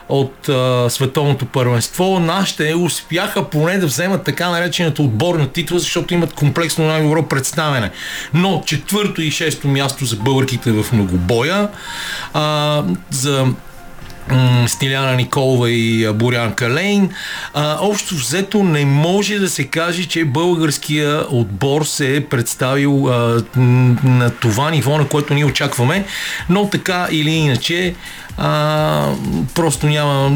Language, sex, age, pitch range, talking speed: Bulgarian, male, 40-59, 125-155 Hz, 125 wpm